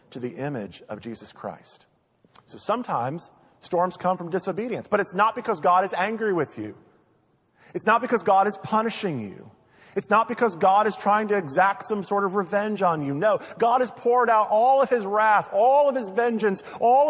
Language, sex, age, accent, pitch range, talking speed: English, male, 40-59, American, 170-235 Hz, 195 wpm